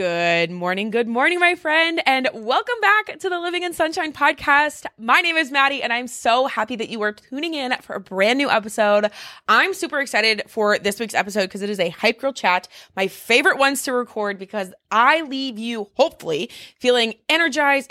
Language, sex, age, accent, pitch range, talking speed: English, female, 20-39, American, 210-290 Hz, 200 wpm